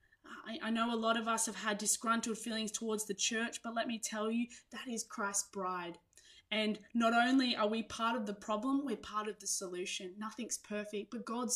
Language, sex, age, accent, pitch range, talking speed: English, female, 20-39, Australian, 200-245 Hz, 210 wpm